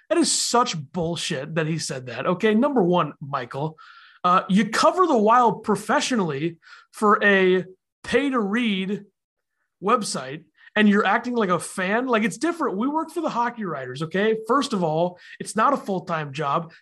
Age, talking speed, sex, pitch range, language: 30-49, 165 wpm, male, 185-240 Hz, English